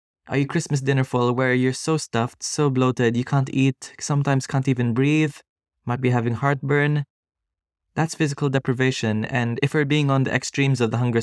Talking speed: 185 wpm